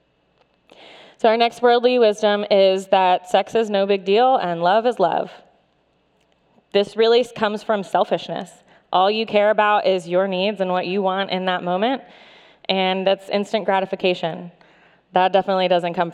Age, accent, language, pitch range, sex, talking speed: 20-39, American, English, 180-215 Hz, female, 160 wpm